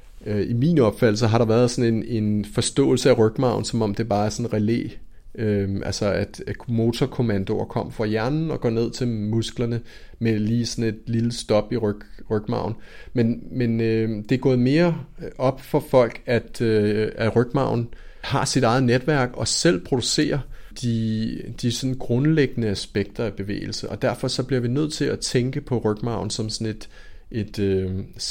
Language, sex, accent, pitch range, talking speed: Danish, male, native, 105-125 Hz, 170 wpm